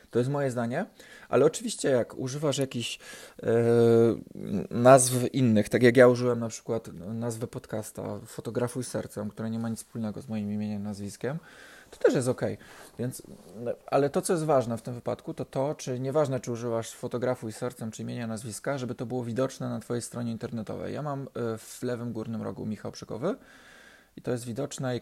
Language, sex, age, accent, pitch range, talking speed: Polish, male, 20-39, native, 110-130 Hz, 180 wpm